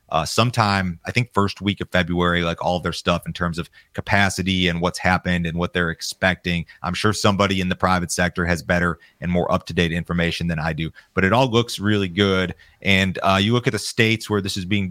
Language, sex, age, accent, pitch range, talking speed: English, male, 30-49, American, 90-105 Hz, 225 wpm